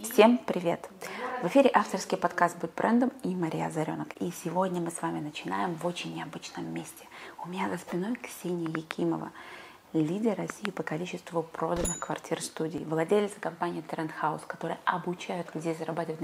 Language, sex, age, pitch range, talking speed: Russian, female, 20-39, 165-205 Hz, 150 wpm